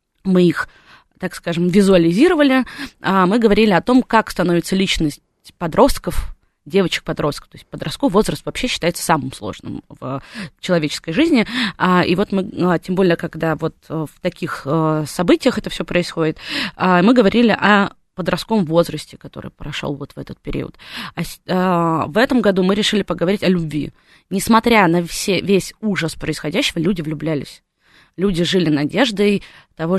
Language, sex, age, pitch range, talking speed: Russian, female, 20-39, 160-195 Hz, 135 wpm